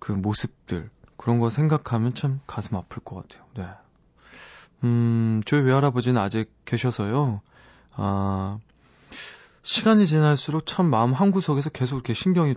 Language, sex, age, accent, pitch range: Korean, male, 20-39, native, 110-145 Hz